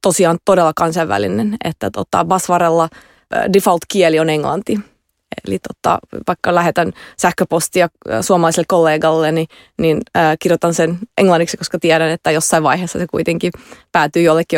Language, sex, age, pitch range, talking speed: Finnish, female, 30-49, 170-195 Hz, 130 wpm